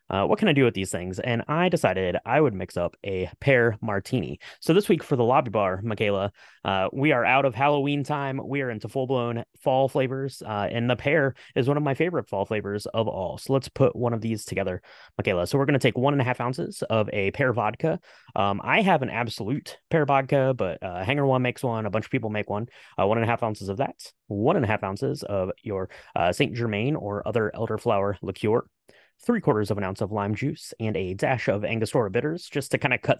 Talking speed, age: 240 wpm, 30-49